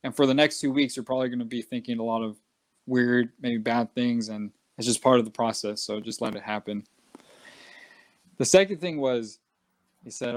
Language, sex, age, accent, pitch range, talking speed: English, male, 20-39, American, 115-140 Hz, 215 wpm